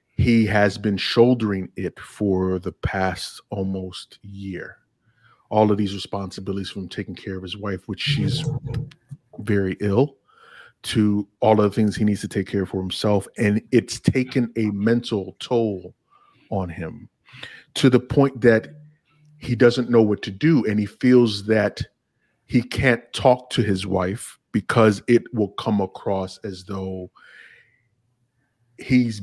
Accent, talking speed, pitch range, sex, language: American, 150 wpm, 100-120 Hz, male, English